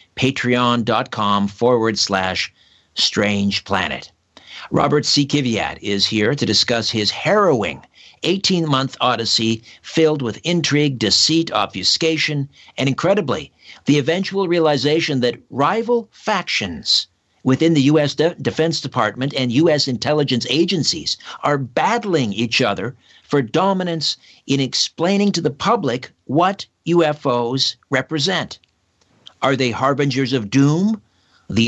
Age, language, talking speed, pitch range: 50-69, English, 110 wpm, 120-160 Hz